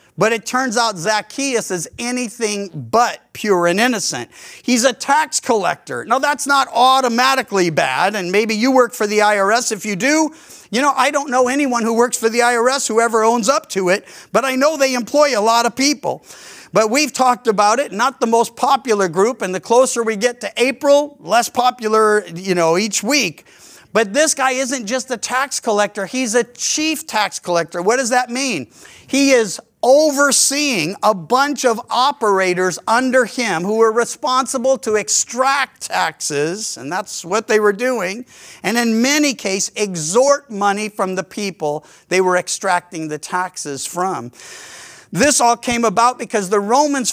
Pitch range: 195-255 Hz